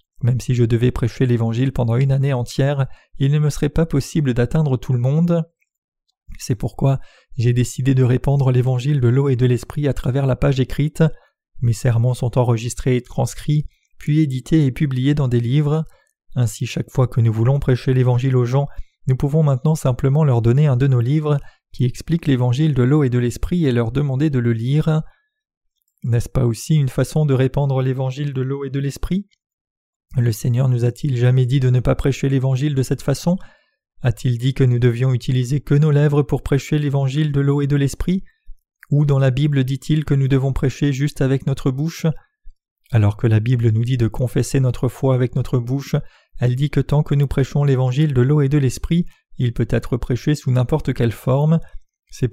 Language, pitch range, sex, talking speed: French, 125-145 Hz, male, 200 wpm